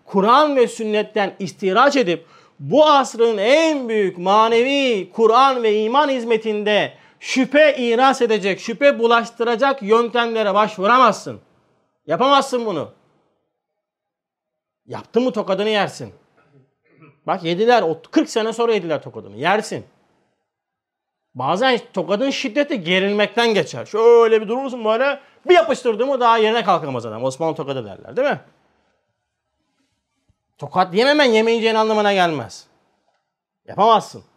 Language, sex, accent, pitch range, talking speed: Turkish, male, native, 170-245 Hz, 110 wpm